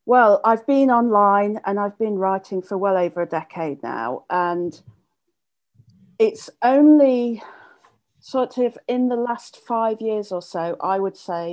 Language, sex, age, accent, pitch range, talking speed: English, female, 40-59, British, 185-235 Hz, 150 wpm